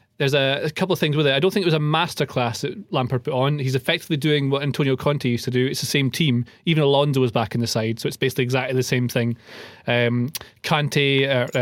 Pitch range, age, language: 125-150 Hz, 30-49, English